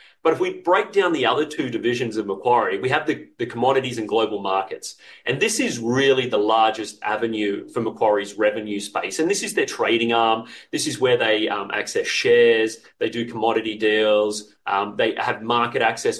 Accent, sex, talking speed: Australian, male, 195 wpm